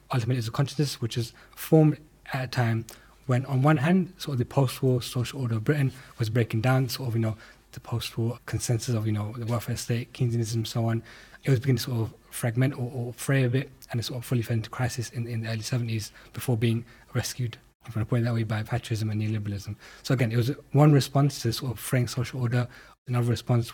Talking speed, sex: 240 wpm, male